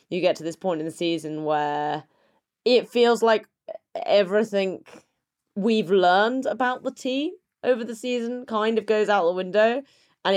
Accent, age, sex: British, 20-39, female